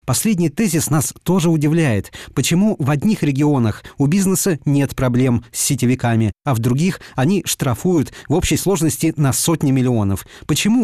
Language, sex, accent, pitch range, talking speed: Russian, male, native, 120-160 Hz, 150 wpm